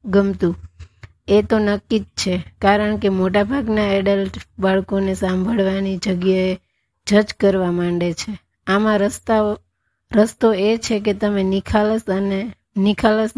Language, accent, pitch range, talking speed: Gujarati, native, 190-215 Hz, 110 wpm